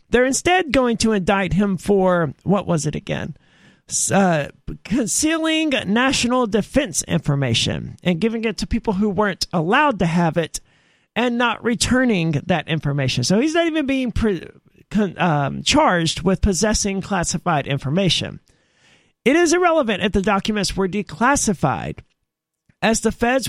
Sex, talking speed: male, 140 wpm